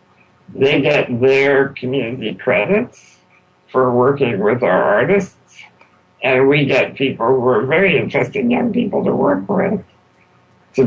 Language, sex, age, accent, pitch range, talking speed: English, male, 60-79, American, 120-145 Hz, 135 wpm